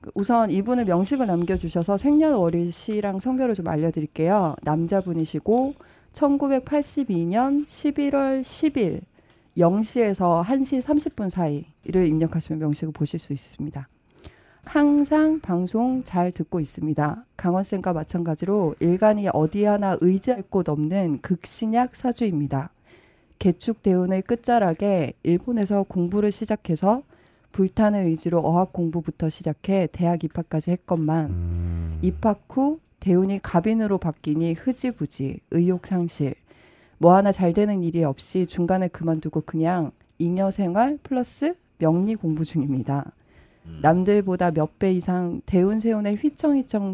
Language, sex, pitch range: Korean, female, 165-220 Hz